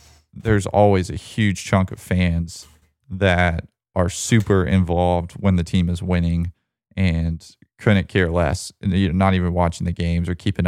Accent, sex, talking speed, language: American, male, 165 wpm, English